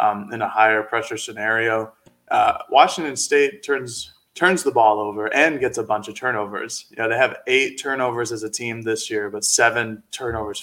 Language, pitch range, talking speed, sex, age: English, 110-135 Hz, 200 wpm, male, 20-39